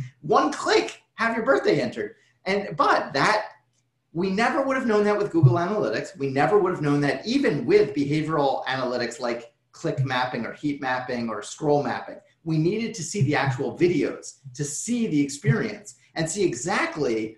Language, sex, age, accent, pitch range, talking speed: English, male, 30-49, American, 135-180 Hz, 175 wpm